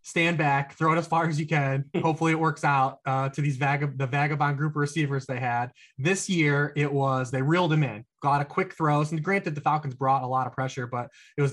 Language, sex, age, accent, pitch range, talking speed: English, male, 20-39, American, 130-155 Hz, 250 wpm